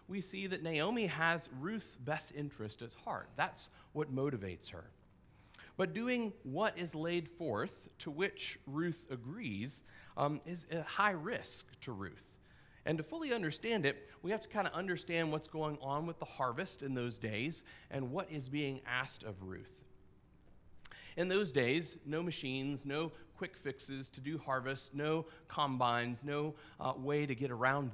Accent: American